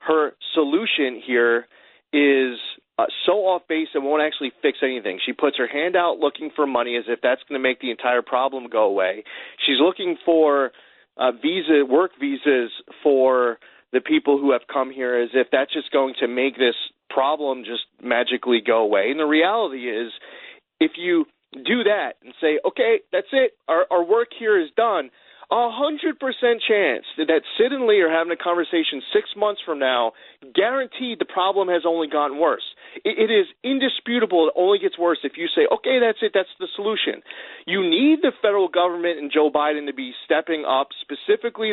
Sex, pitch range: male, 135-225 Hz